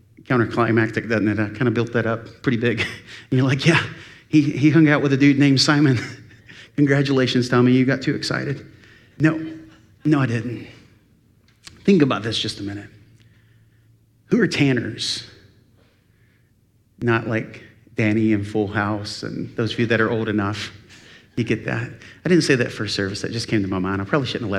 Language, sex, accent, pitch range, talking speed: English, male, American, 110-150 Hz, 185 wpm